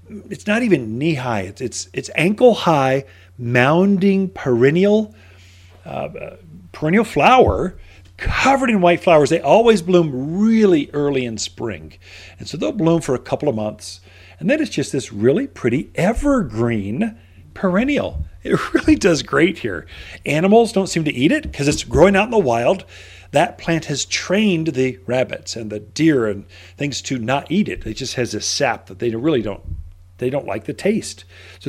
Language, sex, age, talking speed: English, male, 40-59, 175 wpm